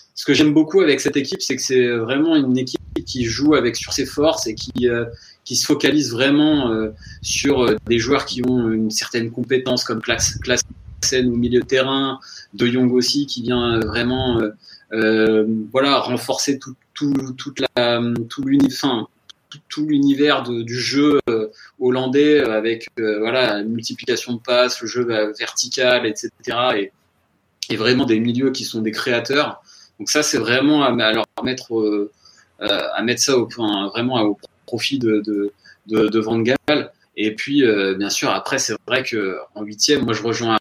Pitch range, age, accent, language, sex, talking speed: 110-140 Hz, 20-39, French, French, male, 175 wpm